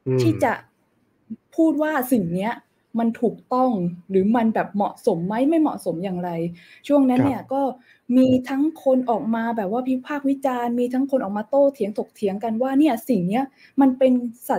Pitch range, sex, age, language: 190-255 Hz, female, 20-39, Thai